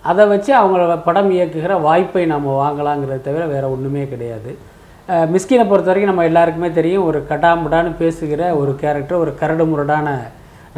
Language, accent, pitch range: Tamil, native, 155-200 Hz